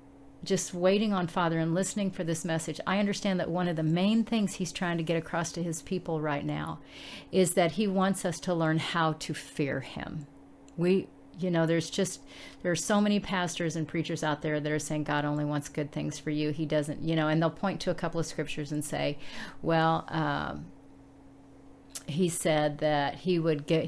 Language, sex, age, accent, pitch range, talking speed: English, female, 50-69, American, 150-185 Hz, 210 wpm